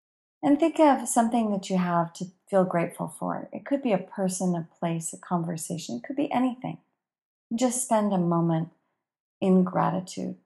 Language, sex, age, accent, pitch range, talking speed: English, female, 40-59, American, 175-230 Hz, 170 wpm